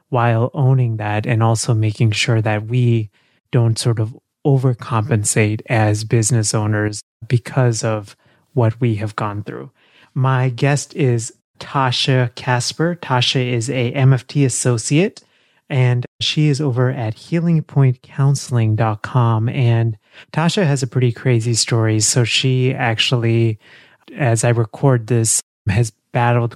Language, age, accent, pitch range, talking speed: English, 30-49, American, 115-135 Hz, 125 wpm